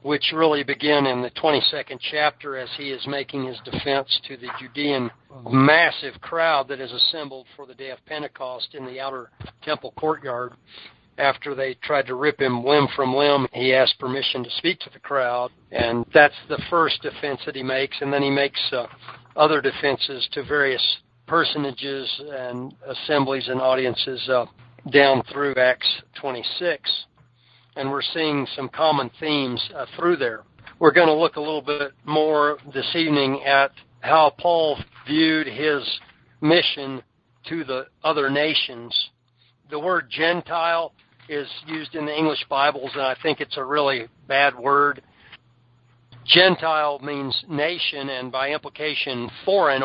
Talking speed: 155 wpm